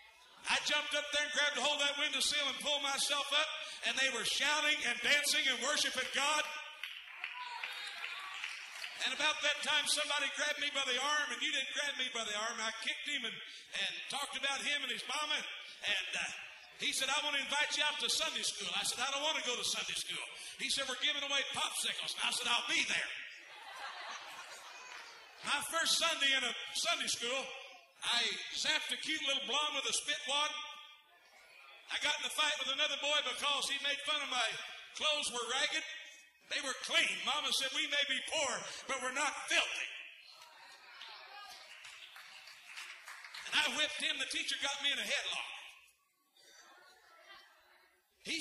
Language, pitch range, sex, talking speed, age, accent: English, 255-300 Hz, male, 180 wpm, 50-69, American